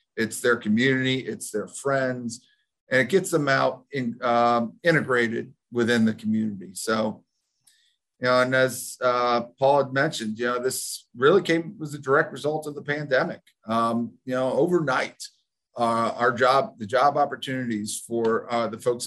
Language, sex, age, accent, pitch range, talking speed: English, male, 40-59, American, 115-145 Hz, 160 wpm